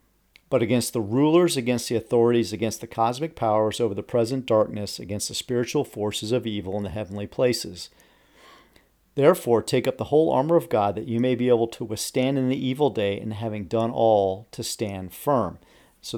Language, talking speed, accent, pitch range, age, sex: English, 195 wpm, American, 105-125 Hz, 40-59, male